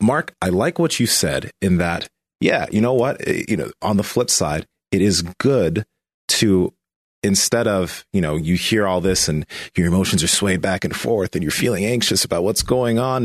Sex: male